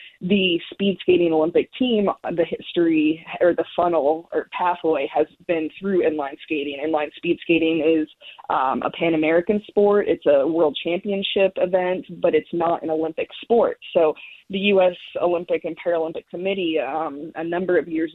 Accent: American